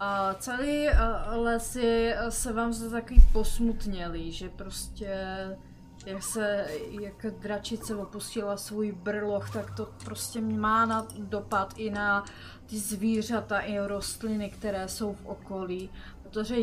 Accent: native